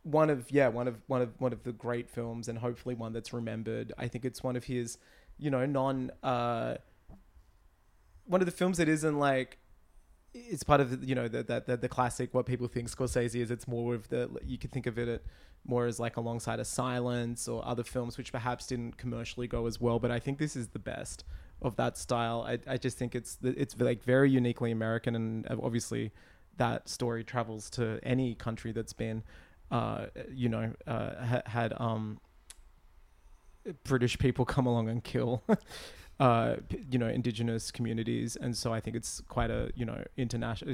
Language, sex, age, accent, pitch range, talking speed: English, male, 20-39, Australian, 110-125 Hz, 195 wpm